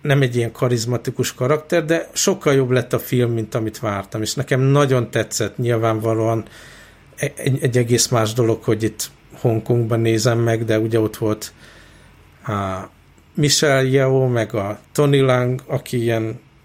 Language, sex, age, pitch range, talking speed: Hungarian, male, 50-69, 110-130 Hz, 150 wpm